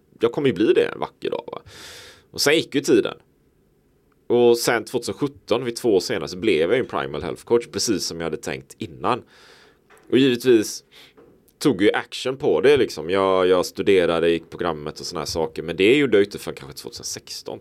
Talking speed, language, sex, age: 200 wpm, Swedish, male, 30-49